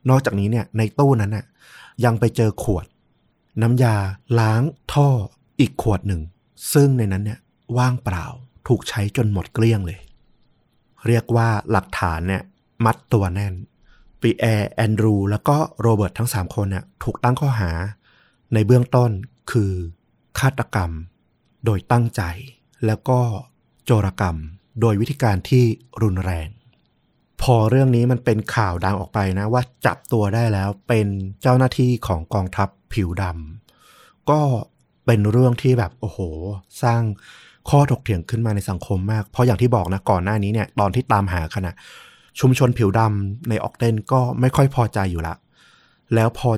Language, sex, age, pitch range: Thai, male, 30-49, 100-125 Hz